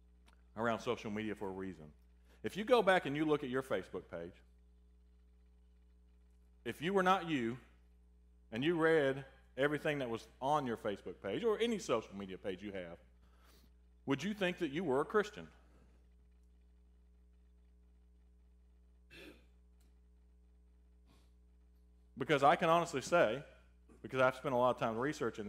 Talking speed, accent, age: 140 wpm, American, 40-59